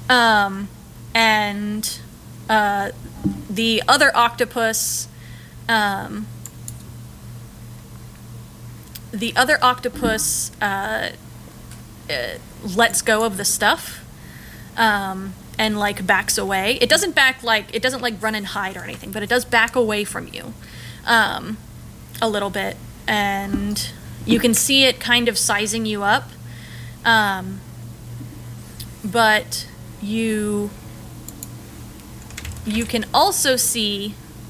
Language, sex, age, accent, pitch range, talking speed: English, female, 20-39, American, 190-230 Hz, 110 wpm